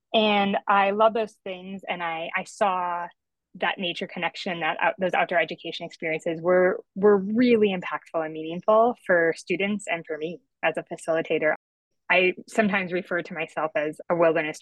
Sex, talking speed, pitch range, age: female, 165 wpm, 165-195 Hz, 20-39